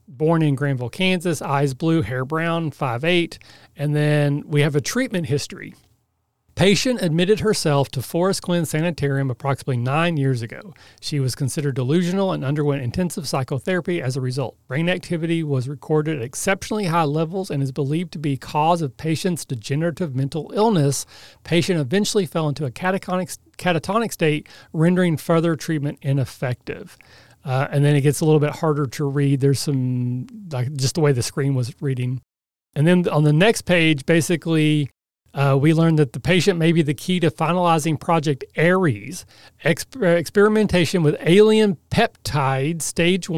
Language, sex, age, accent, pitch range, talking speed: English, male, 40-59, American, 140-170 Hz, 160 wpm